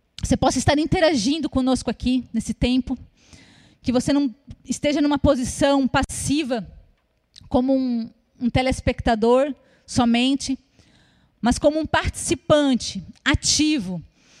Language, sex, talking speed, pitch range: Portuguese, female, 105 wpm, 235-290 Hz